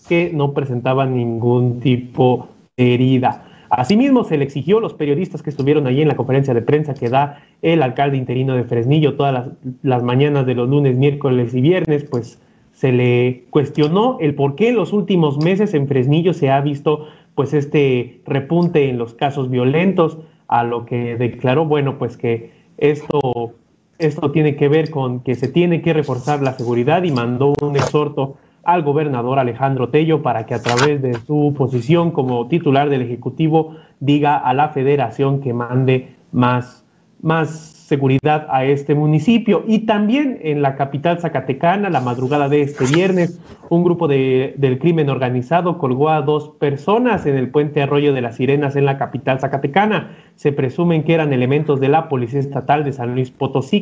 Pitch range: 130-155 Hz